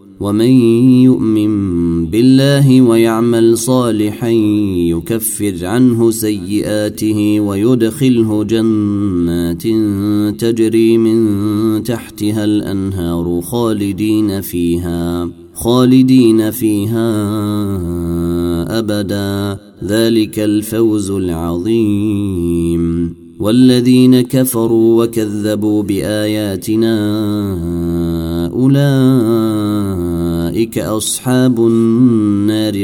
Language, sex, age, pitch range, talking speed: Arabic, male, 30-49, 90-115 Hz, 55 wpm